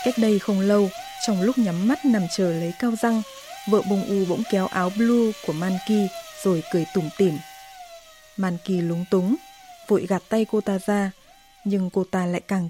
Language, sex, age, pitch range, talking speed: Vietnamese, female, 20-39, 180-240 Hz, 190 wpm